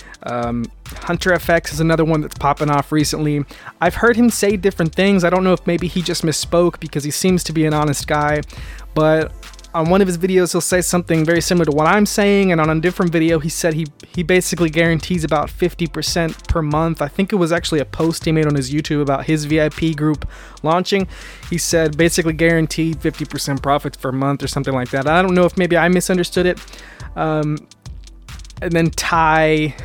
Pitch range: 140-170 Hz